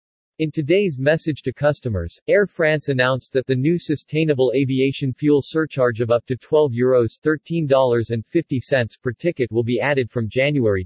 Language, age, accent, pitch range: English, 40-59, American, 115-150 Hz